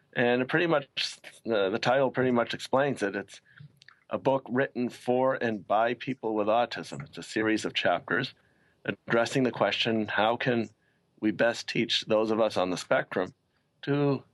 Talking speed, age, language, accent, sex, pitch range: 170 wpm, 40-59, English, American, male, 110-130 Hz